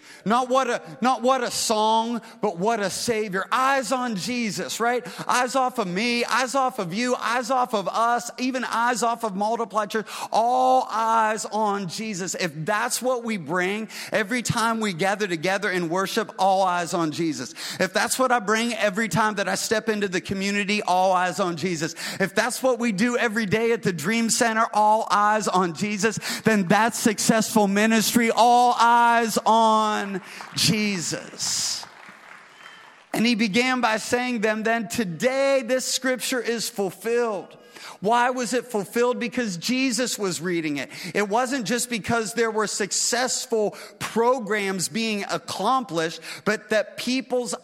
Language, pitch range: English, 185-235 Hz